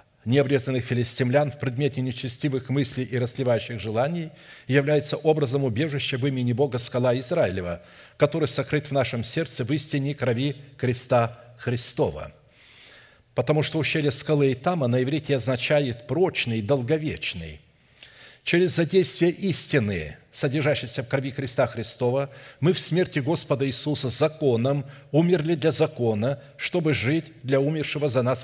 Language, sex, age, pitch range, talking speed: Russian, male, 60-79, 120-150 Hz, 125 wpm